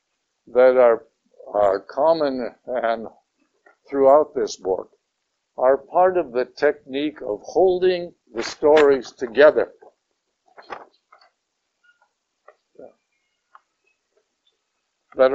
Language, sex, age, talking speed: English, male, 60-79, 75 wpm